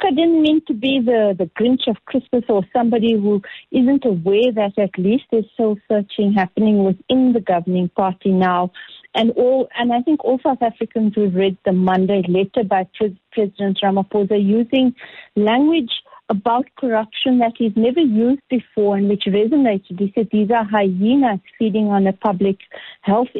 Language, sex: English, female